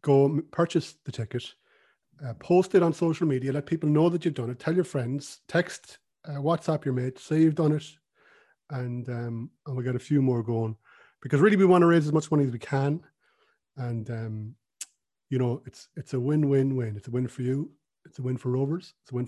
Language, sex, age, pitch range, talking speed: English, male, 30-49, 130-170 Hz, 225 wpm